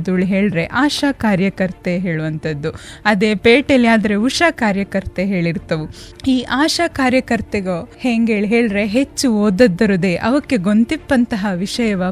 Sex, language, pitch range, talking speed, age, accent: female, Kannada, 190-245 Hz, 90 wpm, 20-39, native